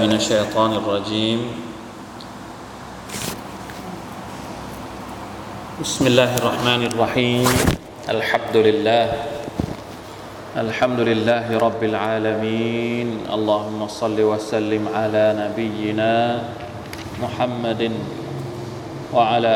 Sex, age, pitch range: male, 20-39, 110-120 Hz